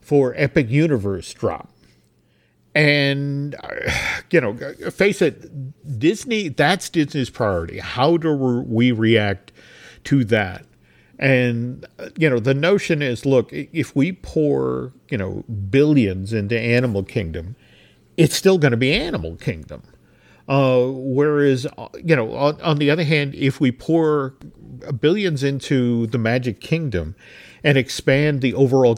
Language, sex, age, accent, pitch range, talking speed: English, male, 50-69, American, 115-150 Hz, 130 wpm